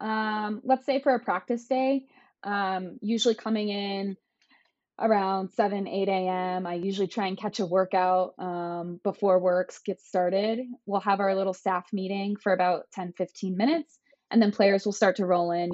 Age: 20-39